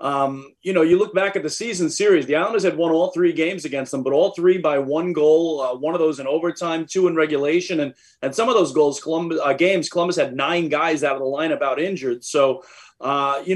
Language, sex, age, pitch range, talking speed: English, male, 30-49, 150-180 Hz, 250 wpm